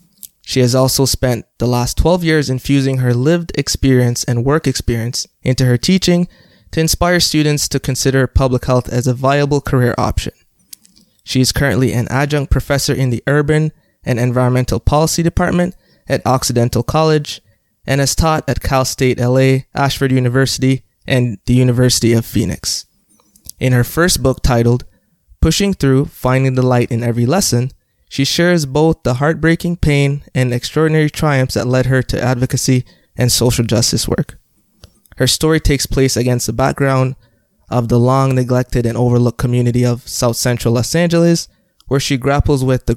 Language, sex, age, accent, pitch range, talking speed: English, male, 20-39, American, 120-145 Hz, 160 wpm